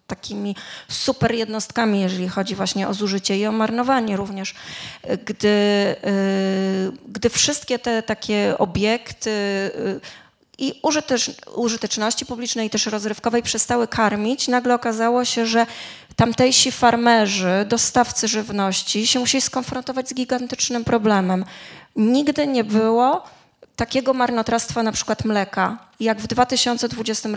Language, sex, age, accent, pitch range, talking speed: Polish, female, 20-39, native, 205-240 Hz, 110 wpm